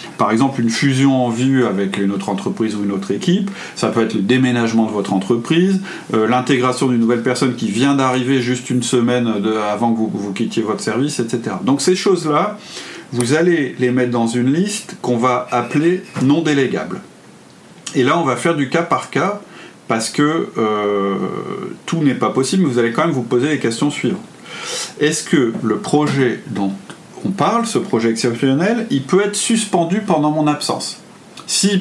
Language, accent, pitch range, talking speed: French, French, 120-160 Hz, 190 wpm